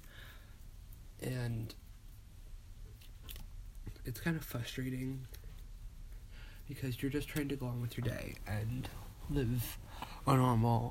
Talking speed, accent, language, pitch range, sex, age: 105 wpm, American, English, 105-130 Hz, male, 20-39